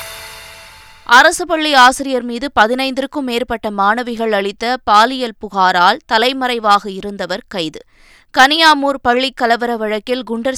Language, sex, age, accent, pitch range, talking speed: Tamil, female, 20-39, native, 205-260 Hz, 100 wpm